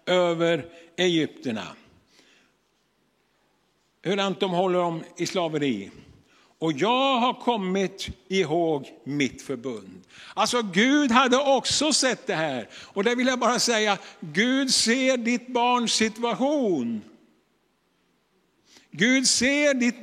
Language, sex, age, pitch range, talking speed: Swedish, male, 60-79, 180-245 Hz, 110 wpm